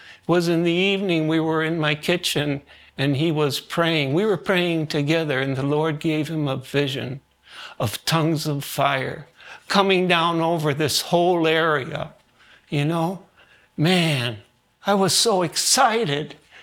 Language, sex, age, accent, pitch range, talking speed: English, male, 60-79, American, 150-180 Hz, 150 wpm